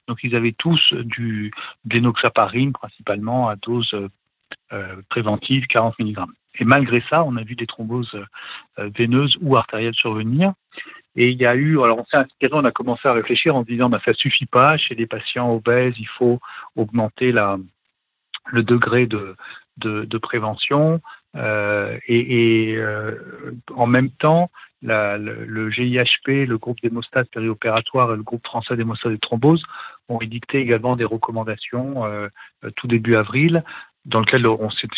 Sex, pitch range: male, 110-125 Hz